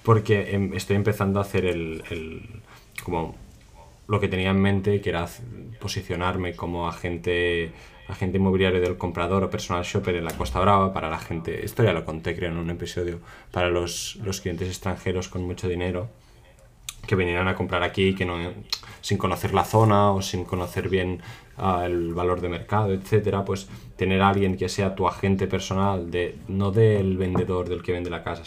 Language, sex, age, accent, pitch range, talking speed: Spanish, male, 20-39, Spanish, 90-100 Hz, 185 wpm